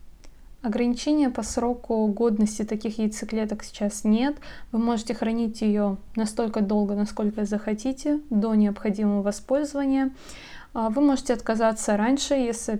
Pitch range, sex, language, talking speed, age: 210-235 Hz, female, Russian, 115 wpm, 20-39